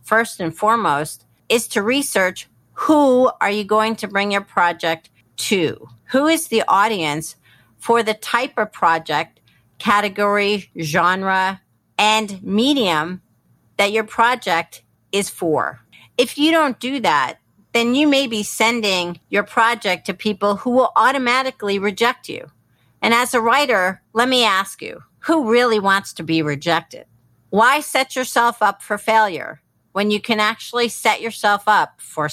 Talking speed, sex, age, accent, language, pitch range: 150 wpm, female, 50-69, American, English, 190-245 Hz